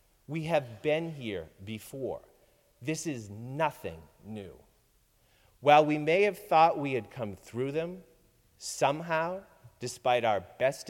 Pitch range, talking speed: 120-160 Hz, 125 wpm